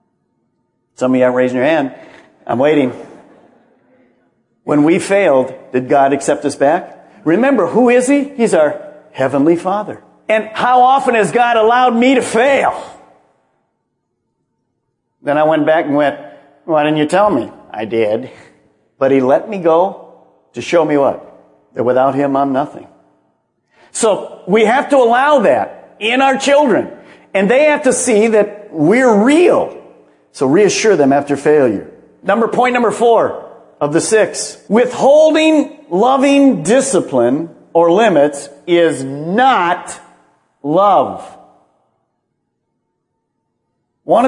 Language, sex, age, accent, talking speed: English, male, 50-69, American, 135 wpm